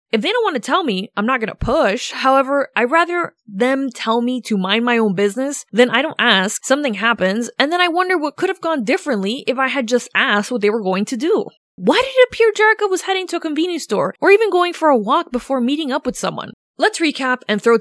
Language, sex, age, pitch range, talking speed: English, female, 20-39, 200-295 Hz, 255 wpm